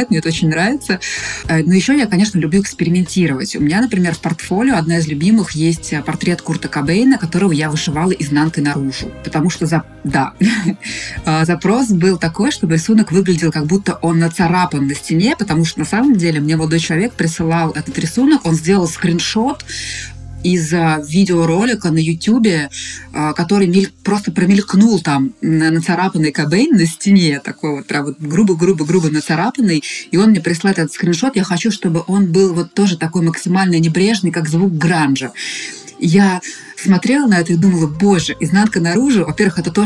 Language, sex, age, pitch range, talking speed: Russian, female, 20-39, 155-190 Hz, 155 wpm